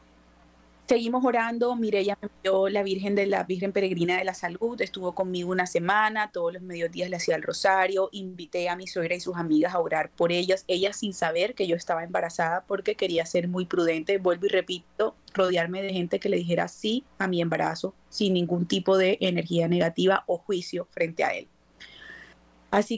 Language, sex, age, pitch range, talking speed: Spanish, female, 30-49, 175-200 Hz, 190 wpm